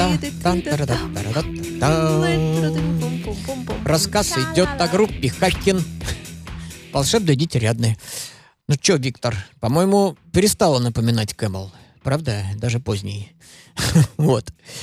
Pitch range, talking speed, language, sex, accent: 115-155 Hz, 75 wpm, Russian, male, native